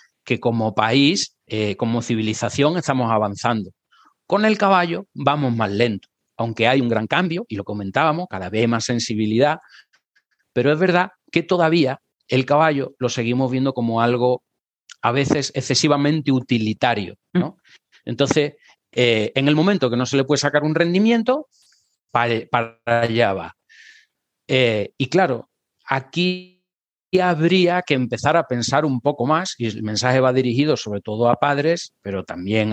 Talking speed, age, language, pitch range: 150 wpm, 30-49, Spanish, 115-150 Hz